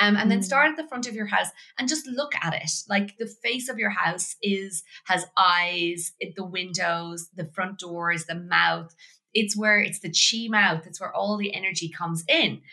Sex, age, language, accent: female, 30-49, English, Irish